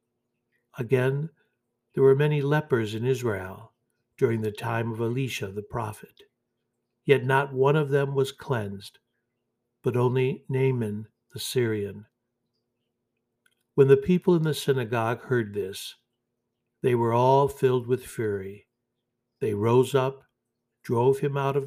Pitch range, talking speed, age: 115-130 Hz, 130 wpm, 60-79